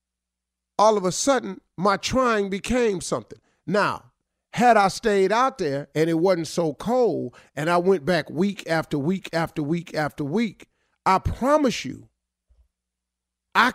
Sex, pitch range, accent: male, 150-205 Hz, American